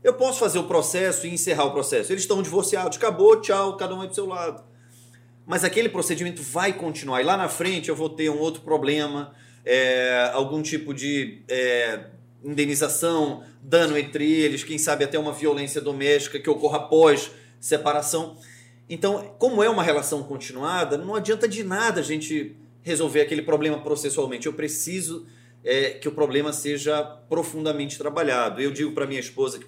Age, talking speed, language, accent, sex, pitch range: 30-49, 170 wpm, Portuguese, Brazilian, male, 140-185 Hz